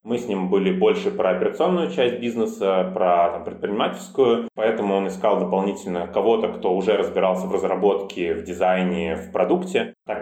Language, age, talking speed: Russian, 20-39, 160 wpm